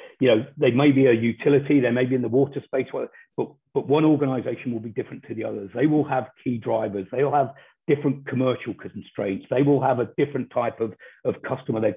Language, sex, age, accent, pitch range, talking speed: English, male, 40-59, British, 115-140 Hz, 225 wpm